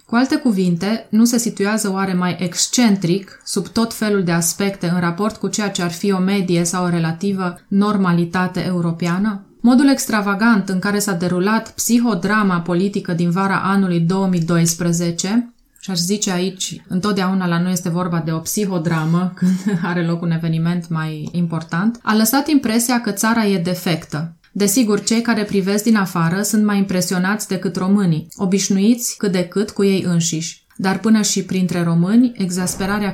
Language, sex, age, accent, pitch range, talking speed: Romanian, female, 20-39, native, 175-215 Hz, 165 wpm